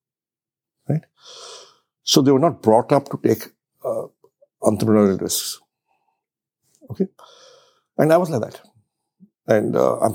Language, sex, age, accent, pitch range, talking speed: English, male, 60-79, Indian, 110-170 Hz, 125 wpm